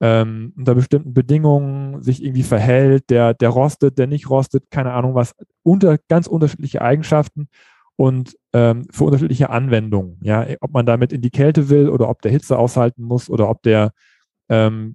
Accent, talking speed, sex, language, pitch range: German, 175 wpm, male, German, 120-155 Hz